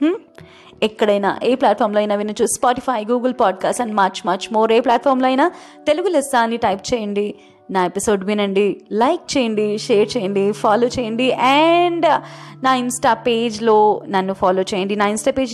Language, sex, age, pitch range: Telugu, female, 20-39, 210-285 Hz